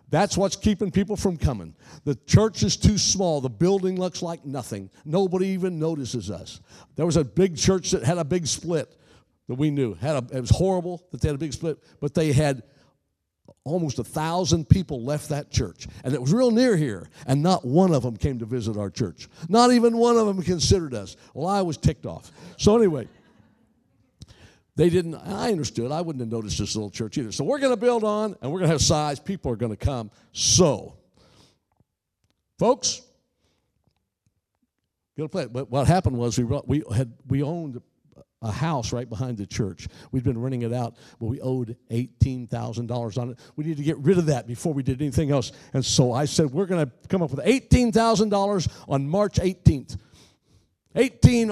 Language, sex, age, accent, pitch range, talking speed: English, male, 60-79, American, 125-180 Hz, 200 wpm